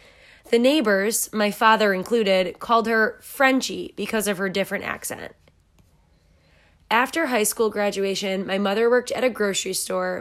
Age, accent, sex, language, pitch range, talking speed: 20-39, American, female, English, 185-225 Hz, 140 wpm